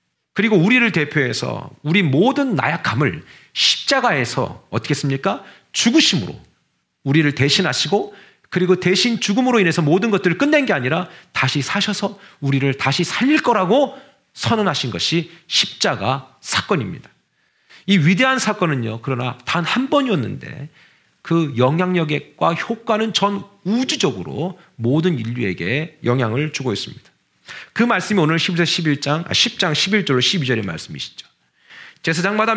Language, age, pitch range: Korean, 40-59, 140-200 Hz